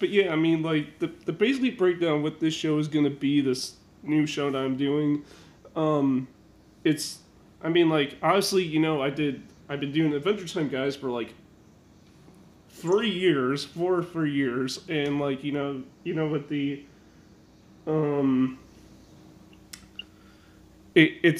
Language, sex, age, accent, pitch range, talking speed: English, male, 30-49, American, 135-160 Hz, 160 wpm